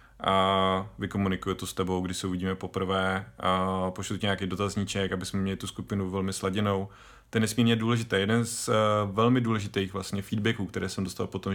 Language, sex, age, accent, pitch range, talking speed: Czech, male, 30-49, native, 95-110 Hz, 185 wpm